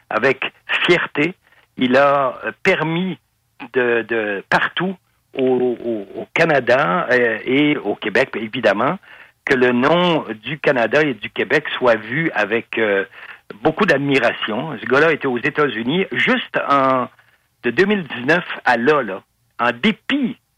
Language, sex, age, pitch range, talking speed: French, male, 60-79, 120-155 Hz, 135 wpm